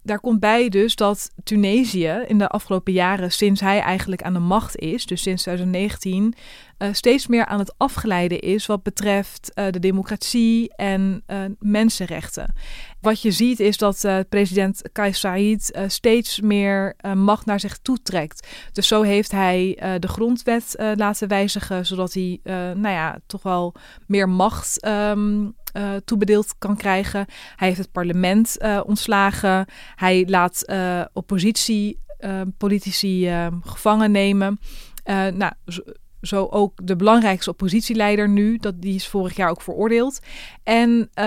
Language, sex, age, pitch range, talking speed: Dutch, female, 20-39, 190-215 Hz, 155 wpm